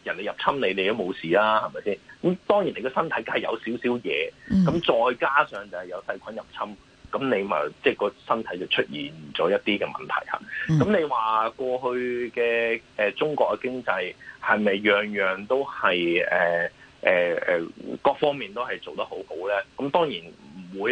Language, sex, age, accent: Chinese, male, 30-49, native